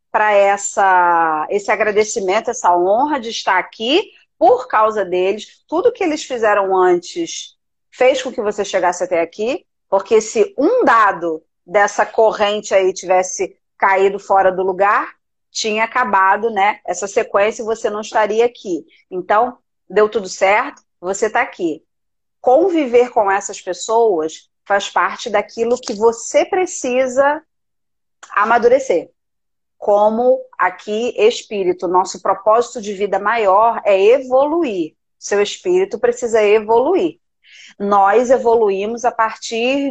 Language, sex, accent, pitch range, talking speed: Portuguese, female, Brazilian, 195-255 Hz, 120 wpm